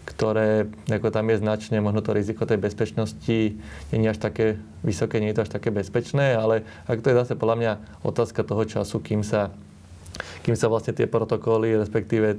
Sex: male